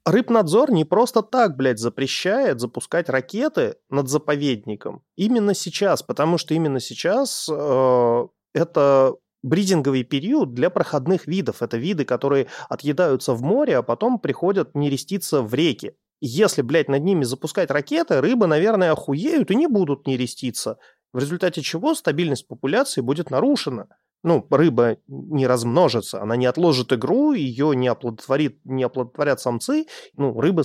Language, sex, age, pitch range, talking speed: Russian, male, 30-49, 125-170 Hz, 140 wpm